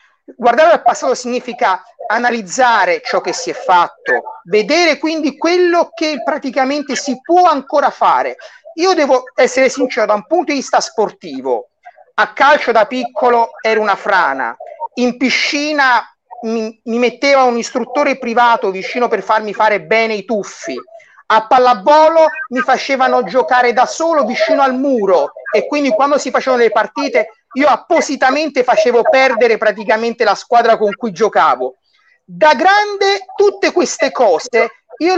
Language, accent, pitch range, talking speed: Italian, native, 225-310 Hz, 145 wpm